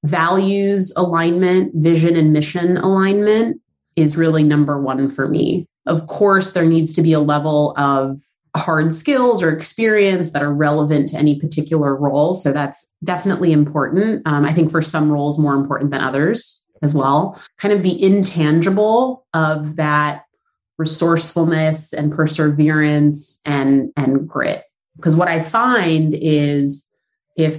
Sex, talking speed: female, 145 wpm